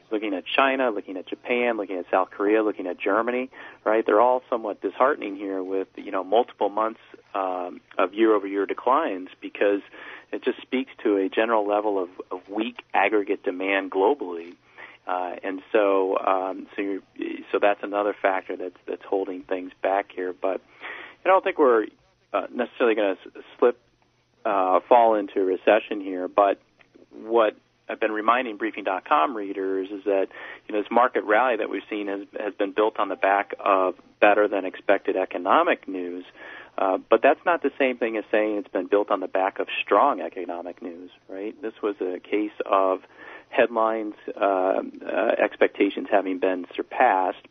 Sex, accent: male, American